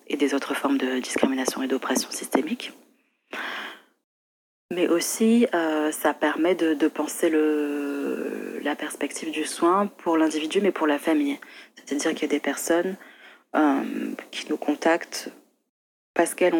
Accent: French